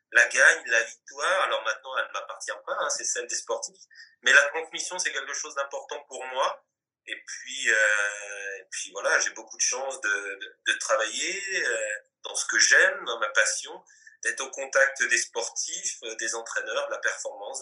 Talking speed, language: 190 wpm, French